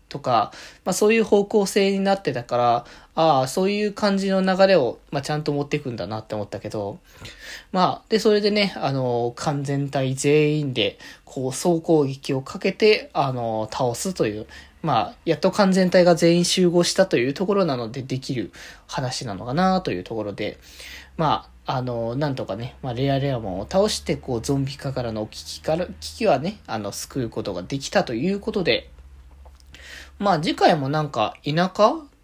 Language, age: Japanese, 20-39